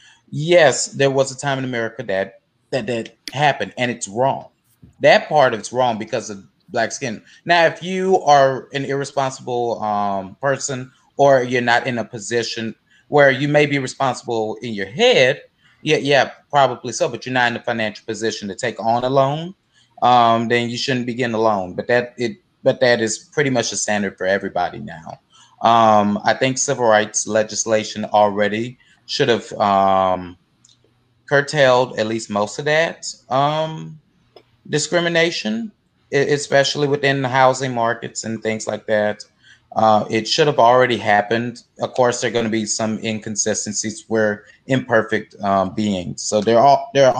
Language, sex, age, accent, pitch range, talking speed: English, male, 30-49, American, 110-140 Hz, 165 wpm